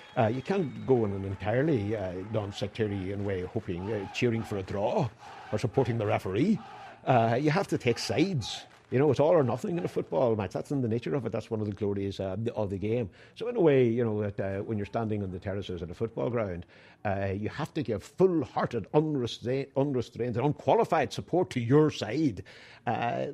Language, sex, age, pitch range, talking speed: English, male, 60-79, 95-130 Hz, 220 wpm